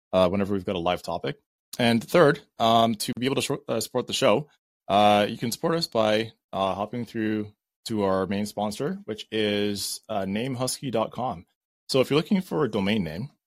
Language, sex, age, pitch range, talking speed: English, male, 20-39, 100-120 Hz, 195 wpm